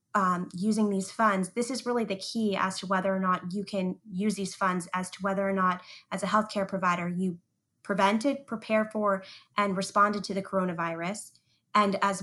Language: English